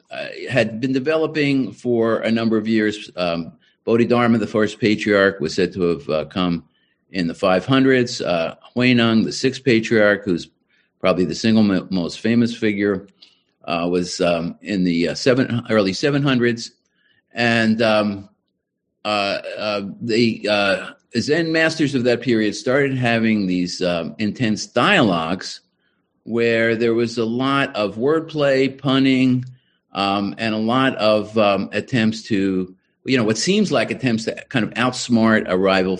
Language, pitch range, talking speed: English, 90-120 Hz, 150 wpm